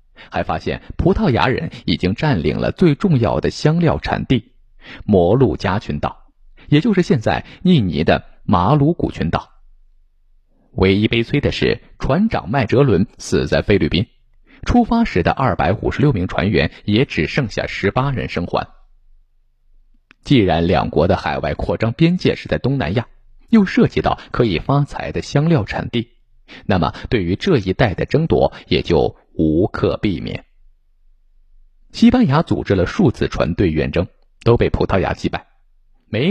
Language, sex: Chinese, male